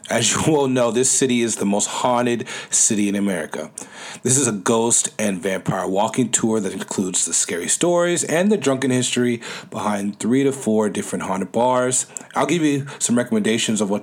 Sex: male